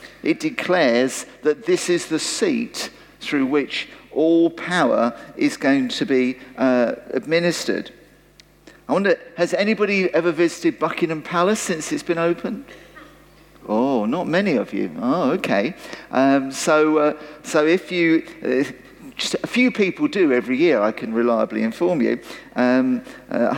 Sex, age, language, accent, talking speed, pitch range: male, 50-69, English, British, 145 wpm, 140-200 Hz